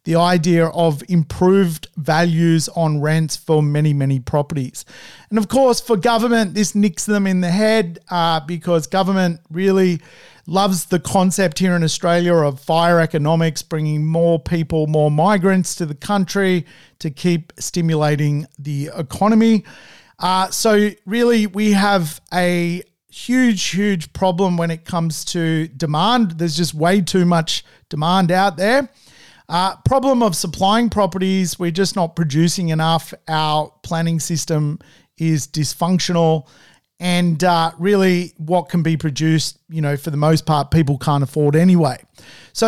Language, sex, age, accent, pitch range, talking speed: English, male, 40-59, Australian, 160-190 Hz, 145 wpm